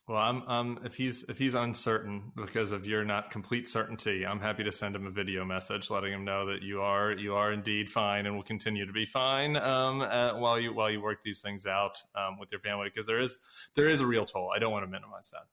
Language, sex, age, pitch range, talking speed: English, male, 20-39, 105-125 Hz, 255 wpm